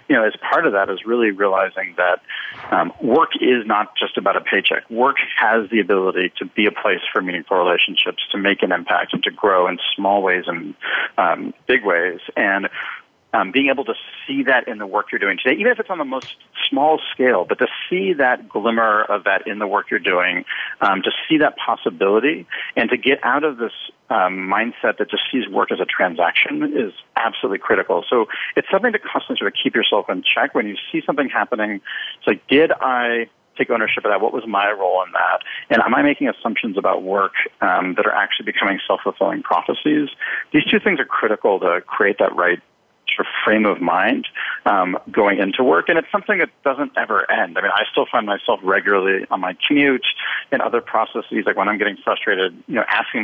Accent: American